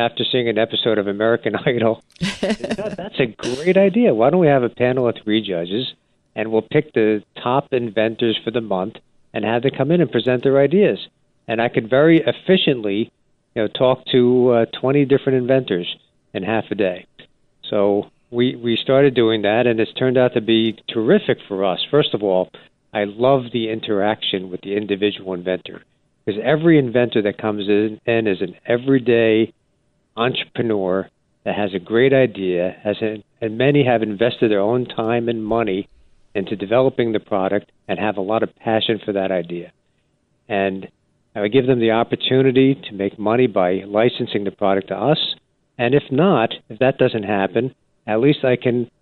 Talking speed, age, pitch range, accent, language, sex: 180 wpm, 50-69, 105-130 Hz, American, English, male